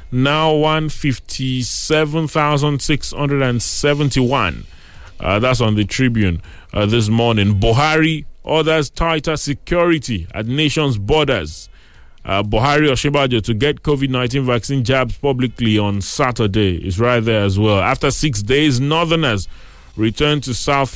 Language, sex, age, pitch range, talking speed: English, male, 30-49, 100-140 Hz, 135 wpm